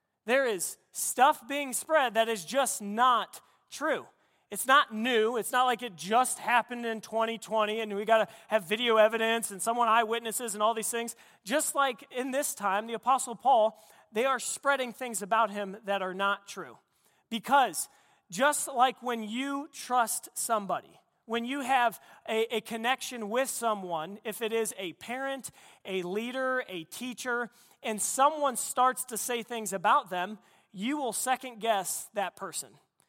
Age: 30-49